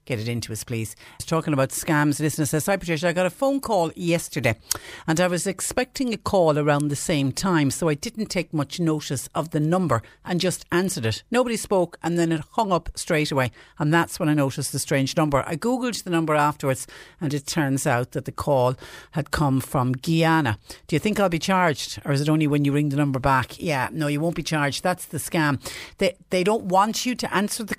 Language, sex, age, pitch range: English, female, 60-79, 140-170 Hz